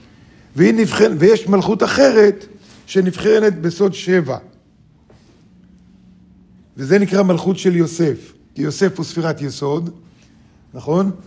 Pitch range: 155-200 Hz